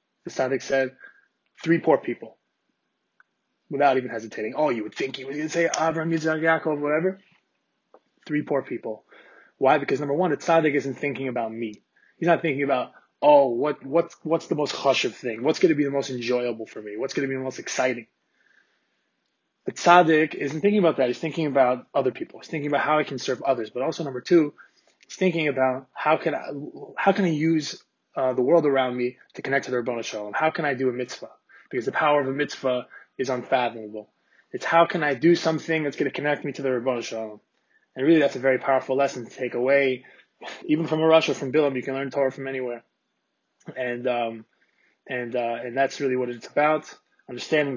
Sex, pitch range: male, 130-160 Hz